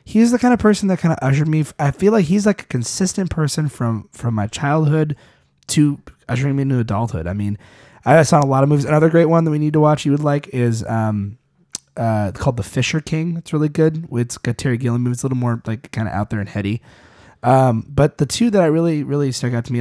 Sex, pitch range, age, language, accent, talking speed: male, 110-150 Hz, 20-39, English, American, 250 wpm